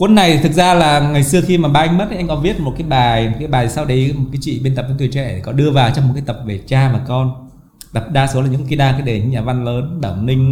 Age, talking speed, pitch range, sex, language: 20-39, 320 wpm, 120-145 Hz, male, Vietnamese